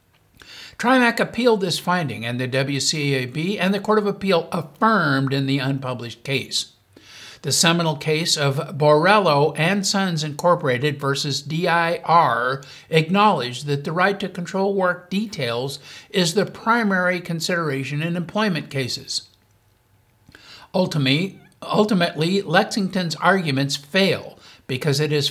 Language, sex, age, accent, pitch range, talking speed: English, male, 60-79, American, 135-190 Hz, 120 wpm